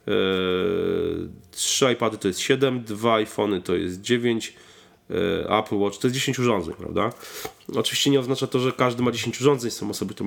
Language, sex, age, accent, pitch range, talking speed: Polish, male, 30-49, native, 100-120 Hz, 170 wpm